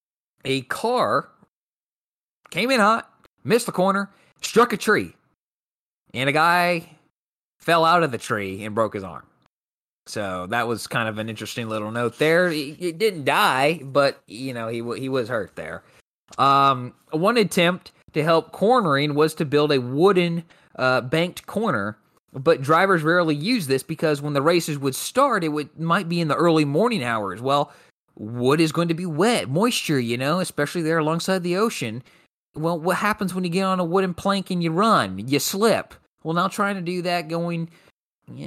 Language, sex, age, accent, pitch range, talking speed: English, male, 20-39, American, 135-180 Hz, 180 wpm